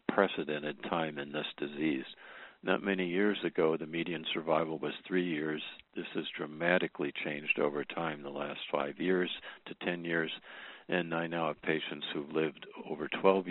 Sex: male